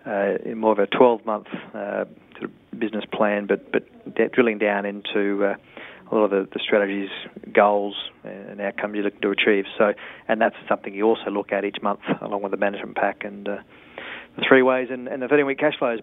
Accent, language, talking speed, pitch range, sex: Australian, English, 215 wpm, 105-120 Hz, male